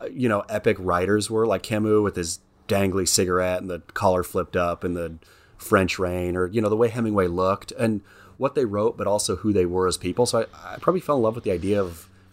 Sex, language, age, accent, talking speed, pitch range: male, English, 30-49, American, 240 wpm, 85-100 Hz